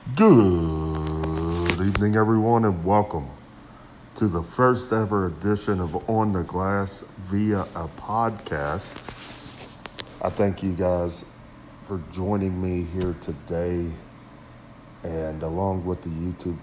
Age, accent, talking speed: 40-59, American, 110 wpm